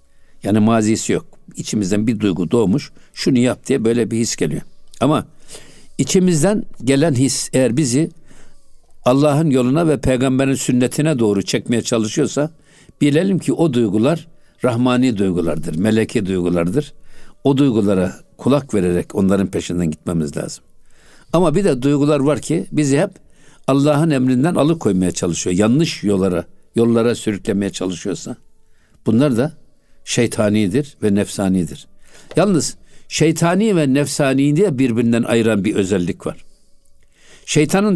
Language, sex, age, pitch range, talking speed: Turkish, male, 60-79, 110-155 Hz, 120 wpm